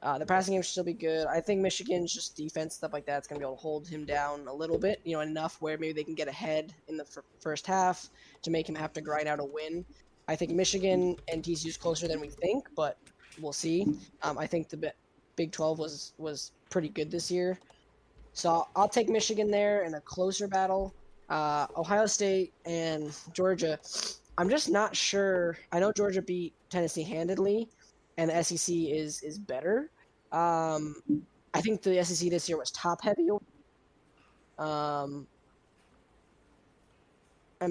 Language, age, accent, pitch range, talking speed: English, 10-29, American, 155-185 Hz, 185 wpm